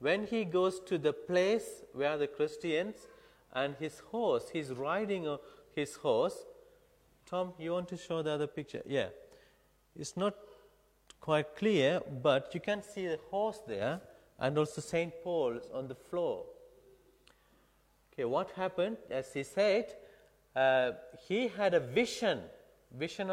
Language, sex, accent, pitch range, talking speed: English, male, Indian, 140-205 Hz, 145 wpm